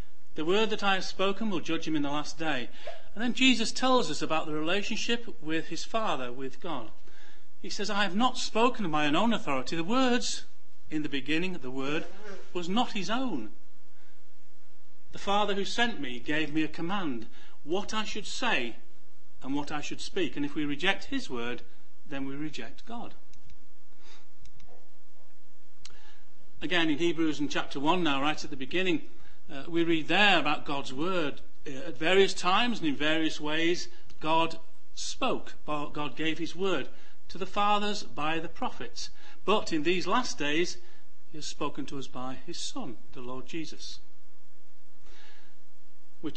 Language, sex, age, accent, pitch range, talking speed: English, male, 50-69, British, 145-205 Hz, 170 wpm